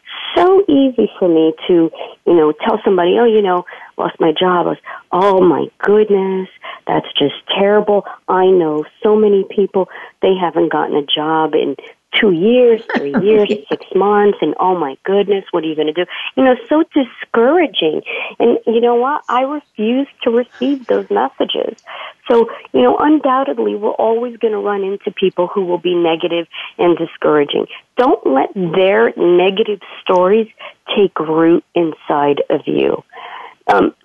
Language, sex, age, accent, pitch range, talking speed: English, female, 40-59, American, 165-235 Hz, 160 wpm